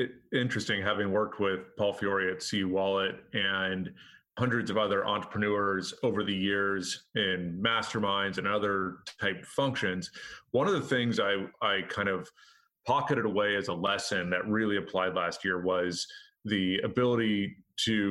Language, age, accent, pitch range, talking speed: English, 30-49, American, 95-115 Hz, 150 wpm